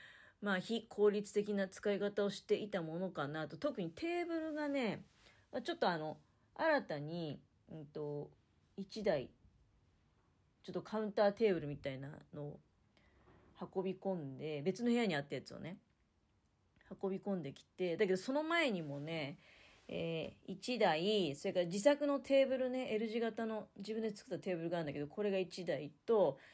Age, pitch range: 40-59, 155-235 Hz